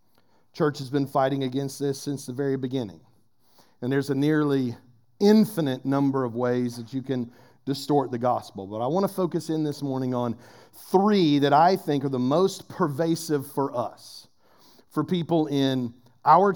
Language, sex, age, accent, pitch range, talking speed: English, male, 40-59, American, 130-175 Hz, 170 wpm